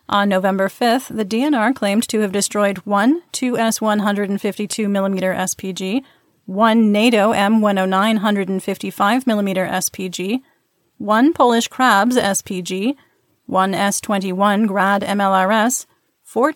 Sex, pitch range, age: female, 195-240 Hz, 30-49